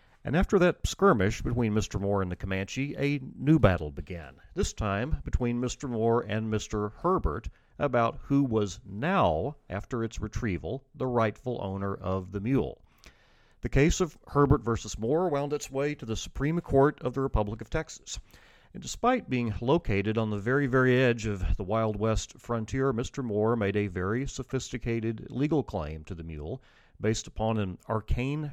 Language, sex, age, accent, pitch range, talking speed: English, male, 40-59, American, 105-135 Hz, 175 wpm